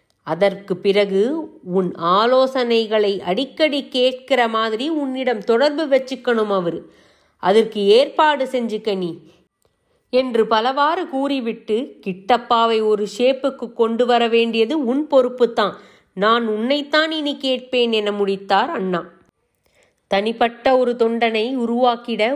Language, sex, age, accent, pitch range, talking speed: Tamil, female, 30-49, native, 215-290 Hz, 100 wpm